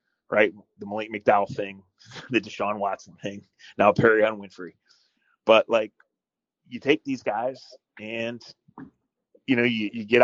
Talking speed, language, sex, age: 145 wpm, English, male, 30-49